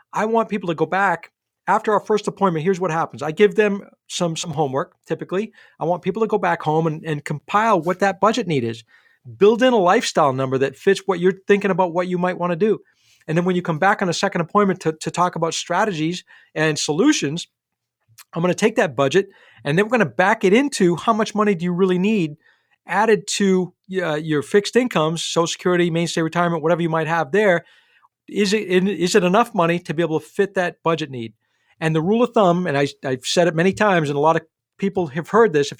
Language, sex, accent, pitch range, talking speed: English, male, American, 155-200 Hz, 225 wpm